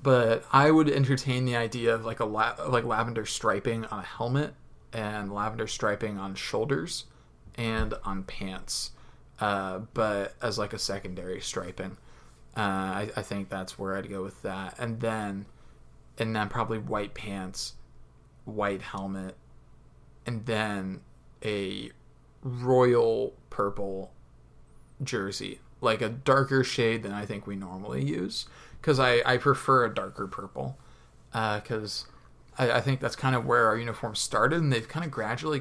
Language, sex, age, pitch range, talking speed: English, male, 20-39, 100-125 Hz, 150 wpm